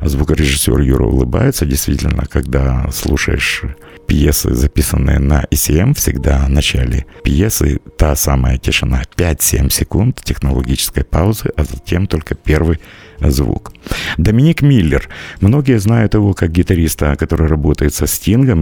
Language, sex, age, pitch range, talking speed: Russian, male, 50-69, 75-95 Hz, 120 wpm